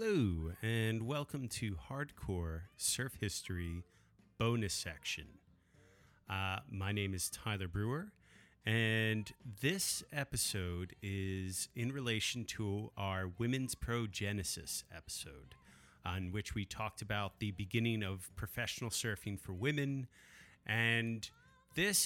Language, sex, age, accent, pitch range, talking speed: English, male, 30-49, American, 95-120 Hz, 110 wpm